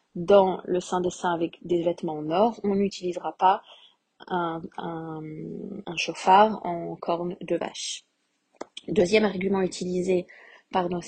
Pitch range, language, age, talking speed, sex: 175-205 Hz, French, 20-39, 140 wpm, female